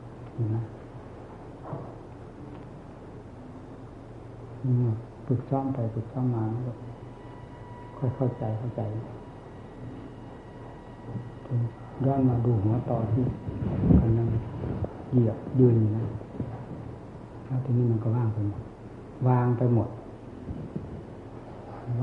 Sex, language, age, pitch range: male, Thai, 60-79, 110-125 Hz